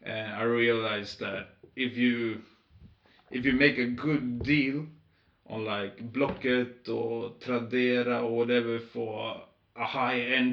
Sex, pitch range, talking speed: male, 115-135 Hz, 125 wpm